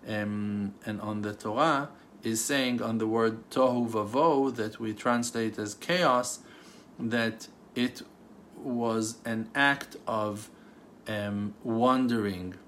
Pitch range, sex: 110-135 Hz, male